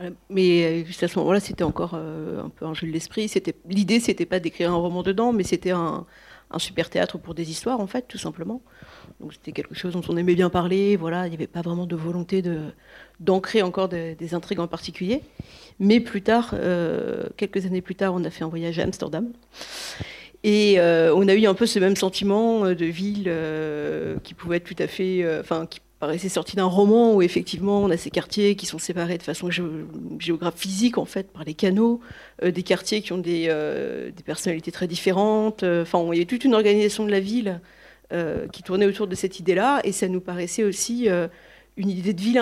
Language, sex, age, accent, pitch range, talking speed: French, female, 40-59, French, 175-205 Hz, 220 wpm